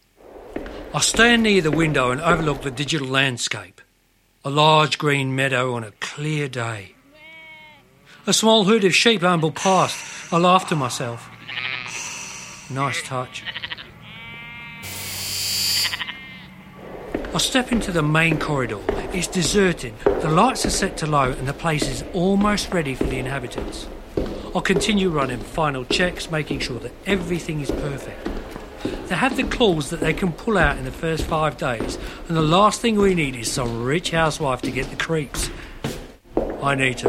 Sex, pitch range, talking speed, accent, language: male, 130-185 Hz, 155 wpm, British, English